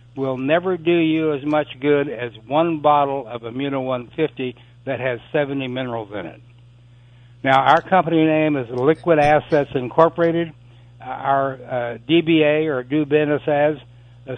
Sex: male